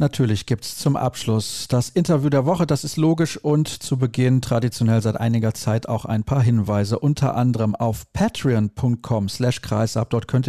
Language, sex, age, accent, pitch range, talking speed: German, male, 40-59, German, 110-135 Hz, 170 wpm